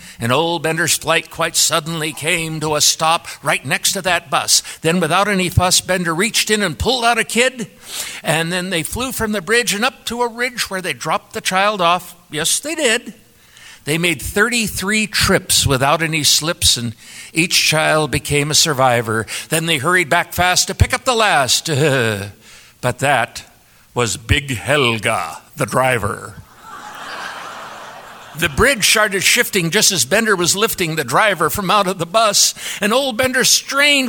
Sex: male